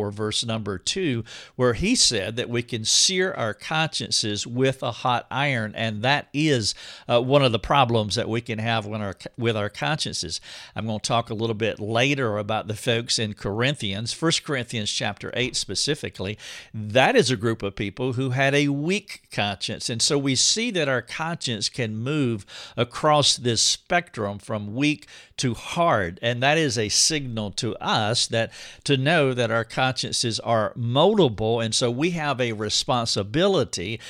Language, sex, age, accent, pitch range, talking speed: English, male, 50-69, American, 110-145 Hz, 170 wpm